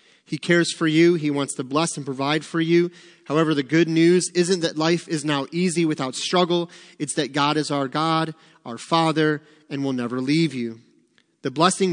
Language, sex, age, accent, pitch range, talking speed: English, male, 30-49, American, 135-160 Hz, 195 wpm